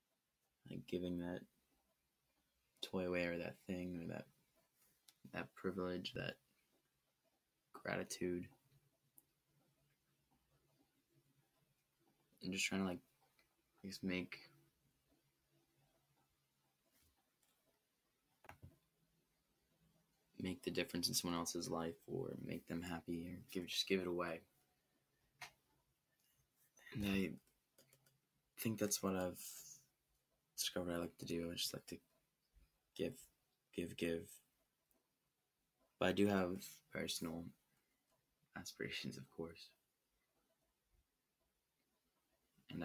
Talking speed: 90 wpm